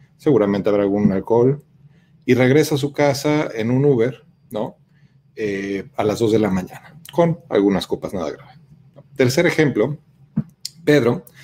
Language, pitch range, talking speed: Spanish, 115-150 Hz, 145 wpm